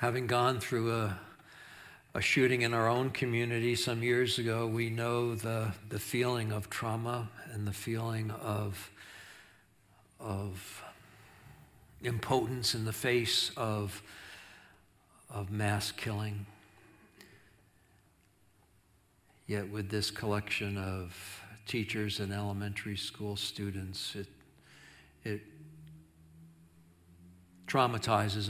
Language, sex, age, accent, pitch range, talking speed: English, male, 60-79, American, 100-110 Hz, 95 wpm